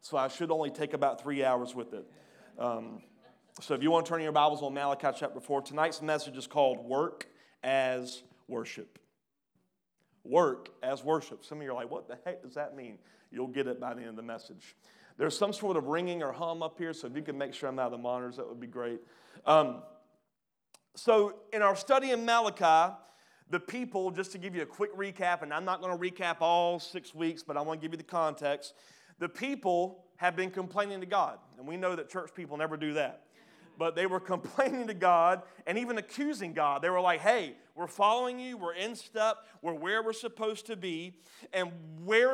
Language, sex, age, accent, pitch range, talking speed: English, male, 30-49, American, 155-210 Hz, 220 wpm